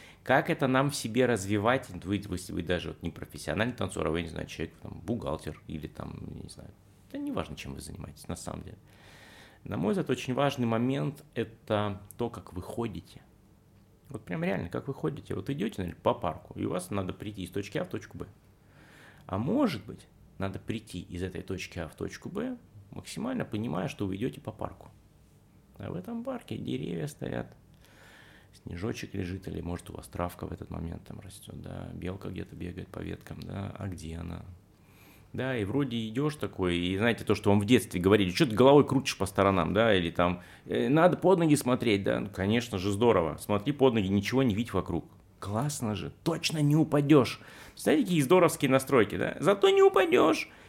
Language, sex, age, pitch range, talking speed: Russian, male, 30-49, 95-140 Hz, 195 wpm